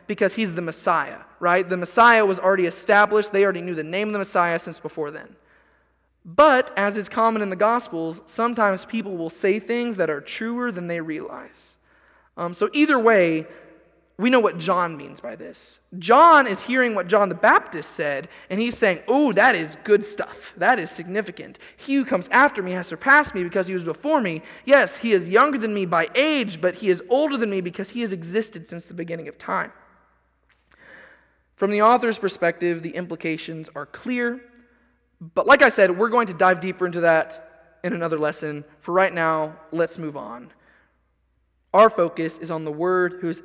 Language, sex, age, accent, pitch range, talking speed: English, male, 20-39, American, 160-210 Hz, 195 wpm